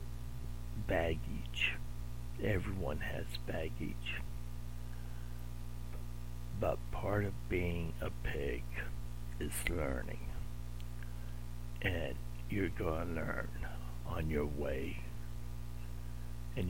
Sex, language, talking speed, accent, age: male, English, 75 wpm, American, 60-79